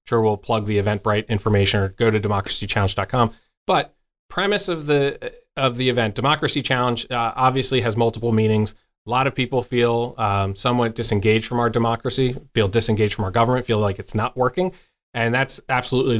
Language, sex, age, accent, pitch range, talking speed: English, male, 30-49, American, 115-140 Hz, 180 wpm